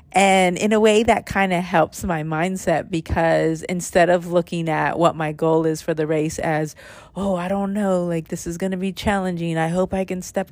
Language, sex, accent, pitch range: English, female, American, 160-190 Hz